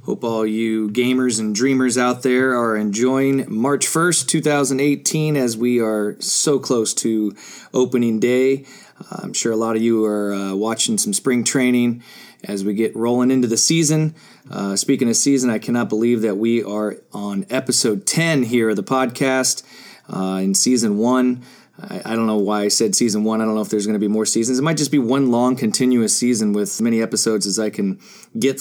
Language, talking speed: English, 200 wpm